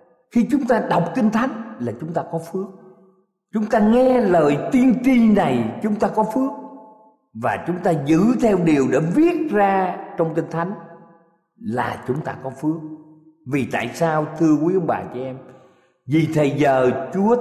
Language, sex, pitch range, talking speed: Vietnamese, male, 145-215 Hz, 180 wpm